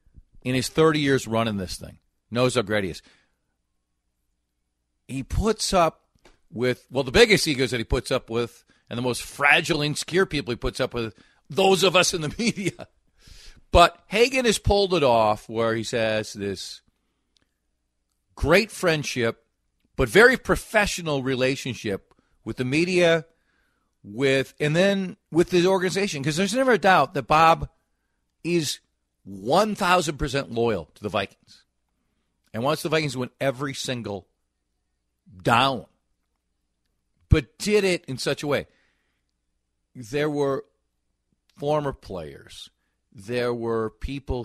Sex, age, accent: male, 40-59, American